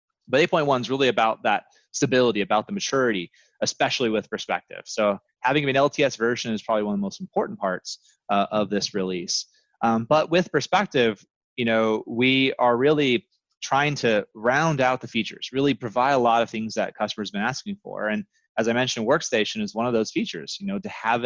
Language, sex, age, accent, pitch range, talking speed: English, male, 20-39, American, 110-140 Hz, 200 wpm